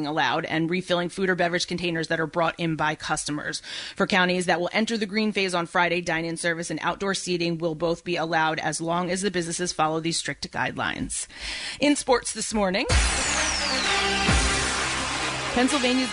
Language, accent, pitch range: English, American, 165-200 Hz